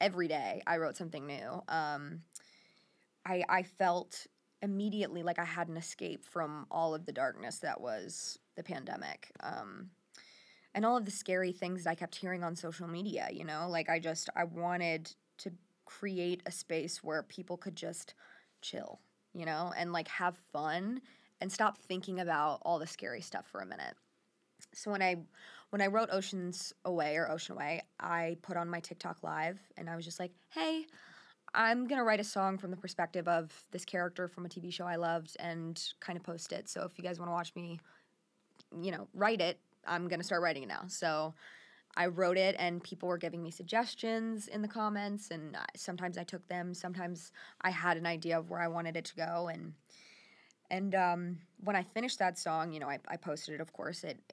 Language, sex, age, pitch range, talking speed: English, female, 20-39, 170-190 Hz, 200 wpm